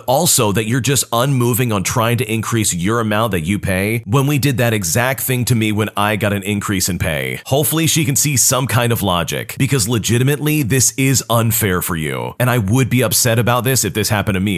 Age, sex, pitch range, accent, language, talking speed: 30-49, male, 105-140 Hz, American, English, 230 wpm